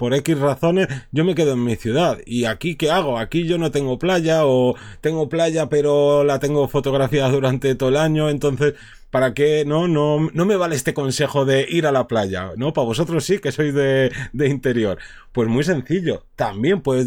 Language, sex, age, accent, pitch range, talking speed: Spanish, male, 30-49, Spanish, 120-145 Hz, 205 wpm